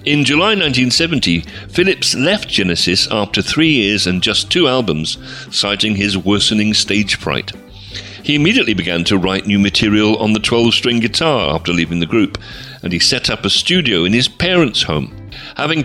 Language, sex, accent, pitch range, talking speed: English, male, British, 90-130 Hz, 165 wpm